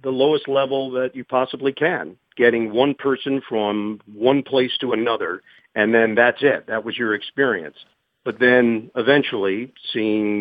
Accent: American